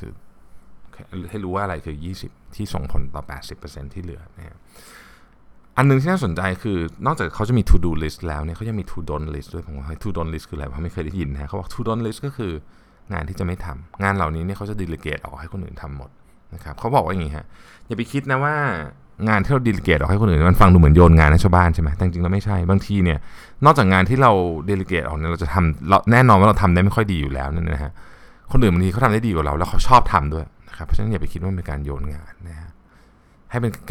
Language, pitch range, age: Thai, 75-100 Hz, 20-39